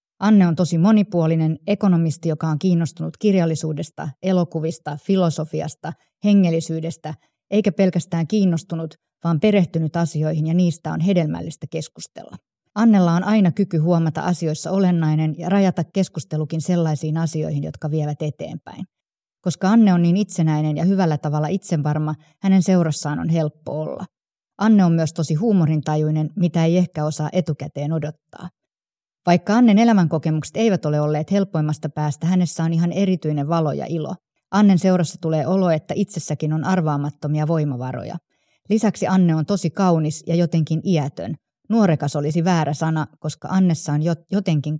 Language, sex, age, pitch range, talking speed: Finnish, female, 30-49, 155-185 Hz, 140 wpm